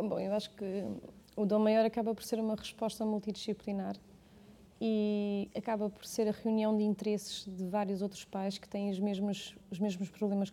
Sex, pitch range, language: female, 180-205 Hz, Portuguese